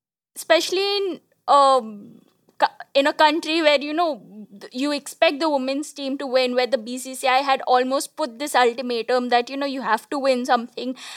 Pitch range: 245-285 Hz